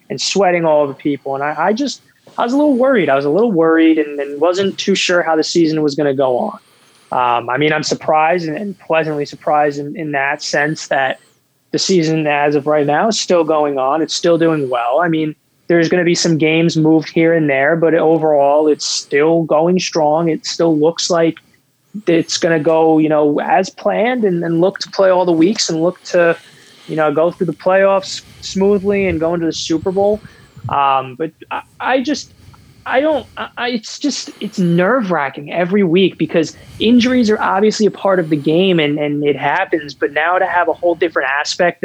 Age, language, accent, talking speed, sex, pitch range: 20-39, English, American, 215 wpm, male, 150-180 Hz